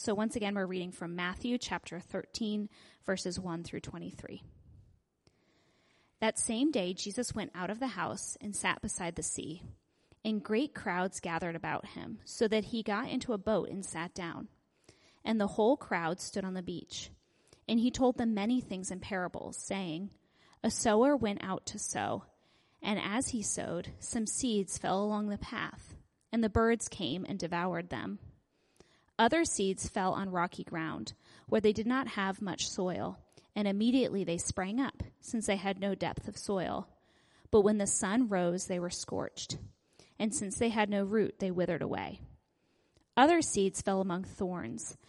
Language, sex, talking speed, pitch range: English, female, 175 wpm, 185-225 Hz